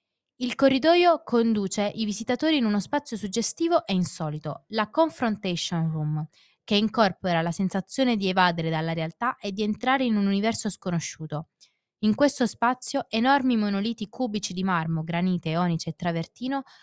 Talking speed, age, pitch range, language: 145 wpm, 20-39, 180-250 Hz, Italian